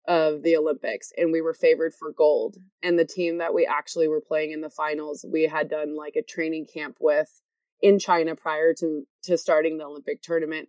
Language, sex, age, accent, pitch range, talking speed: English, female, 20-39, American, 160-200 Hz, 210 wpm